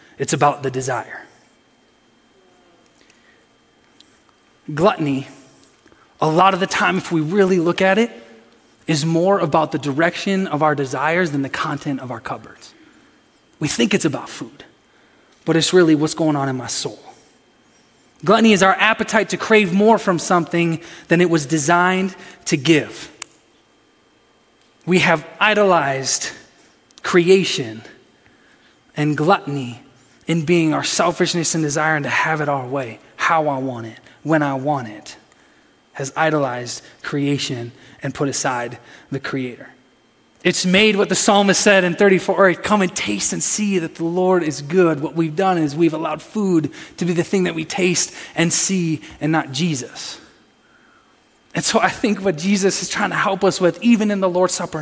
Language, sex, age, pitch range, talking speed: English, male, 20-39, 145-185 Hz, 160 wpm